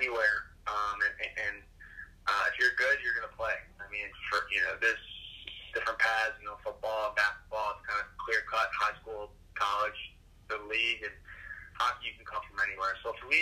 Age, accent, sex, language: 20-39, American, male, English